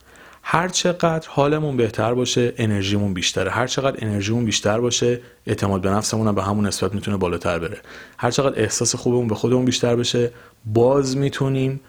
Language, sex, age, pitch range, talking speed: Persian, male, 40-59, 105-135 Hz, 155 wpm